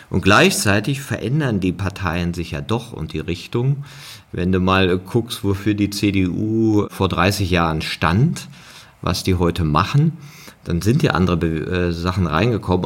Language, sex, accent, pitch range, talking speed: German, male, German, 85-110 Hz, 155 wpm